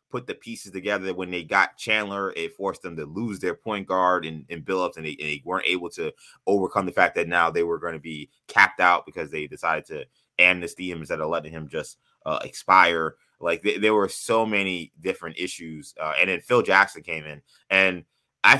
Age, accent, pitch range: 20-39, American, 85-110 Hz